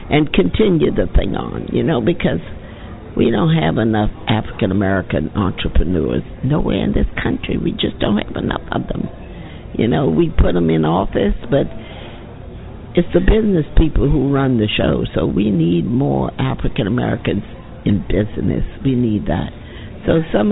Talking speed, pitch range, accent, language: 155 wpm, 95-125 Hz, American, English